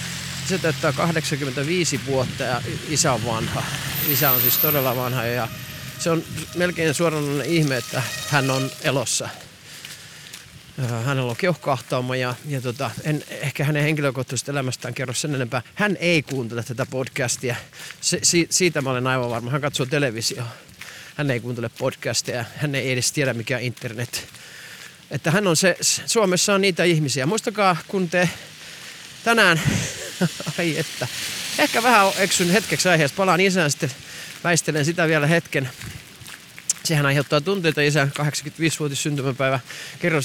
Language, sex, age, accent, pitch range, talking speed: Finnish, male, 30-49, native, 135-170 Hz, 135 wpm